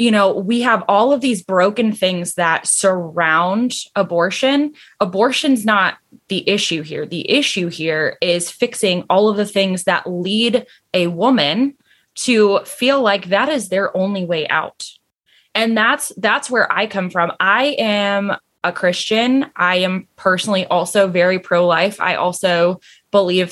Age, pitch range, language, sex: 20-39, 175-200 Hz, English, female